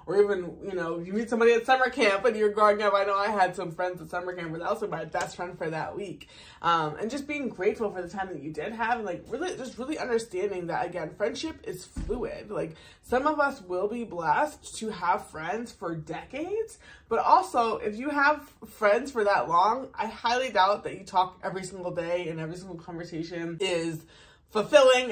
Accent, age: American, 20-39